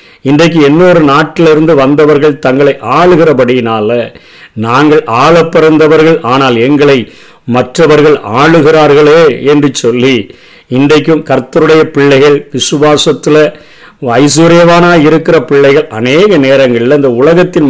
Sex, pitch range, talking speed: male, 135-160 Hz, 90 wpm